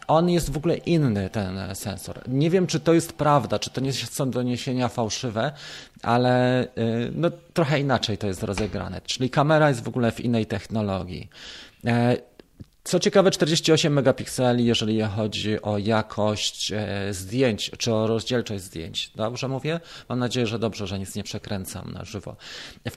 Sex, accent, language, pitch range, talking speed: male, native, Polish, 105-140 Hz, 155 wpm